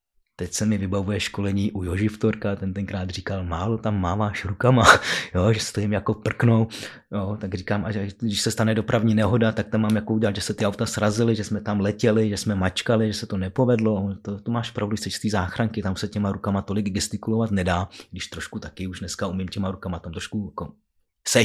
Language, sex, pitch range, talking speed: Czech, male, 95-110 Hz, 215 wpm